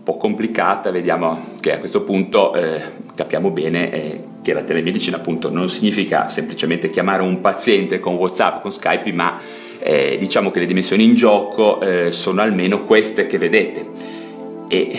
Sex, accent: male, native